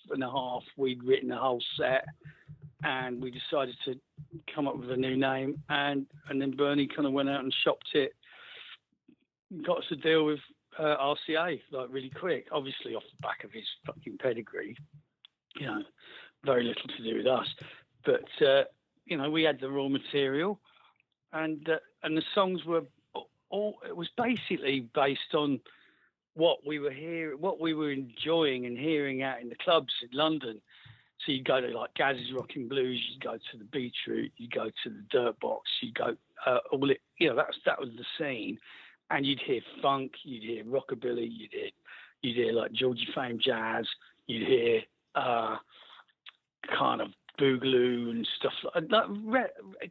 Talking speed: 180 wpm